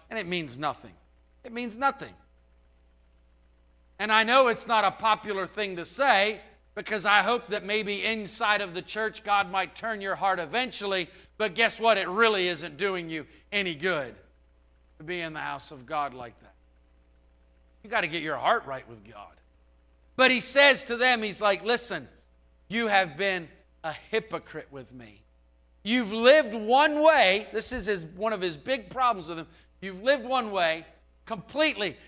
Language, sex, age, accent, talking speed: English, male, 50-69, American, 175 wpm